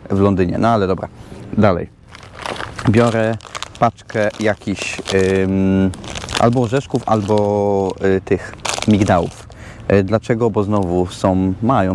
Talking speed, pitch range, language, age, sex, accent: 90 wpm, 95-115 Hz, Polish, 30-49, male, native